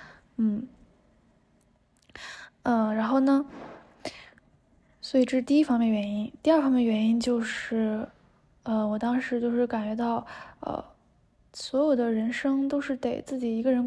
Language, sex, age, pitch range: Chinese, female, 20-39, 230-270 Hz